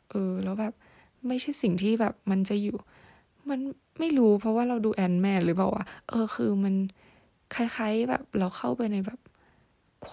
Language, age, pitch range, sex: Thai, 10-29, 190-220 Hz, female